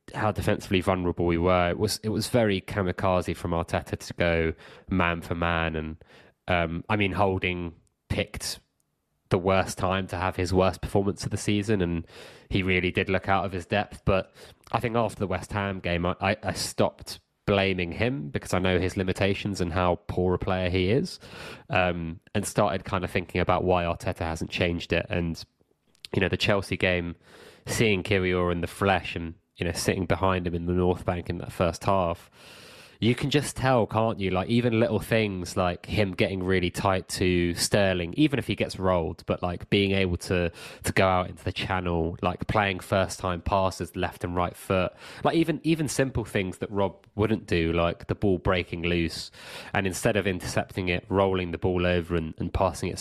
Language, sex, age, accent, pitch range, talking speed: English, male, 20-39, British, 90-105 Hz, 200 wpm